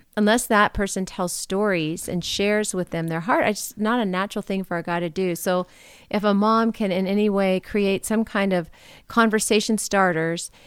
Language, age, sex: English, 40-59, female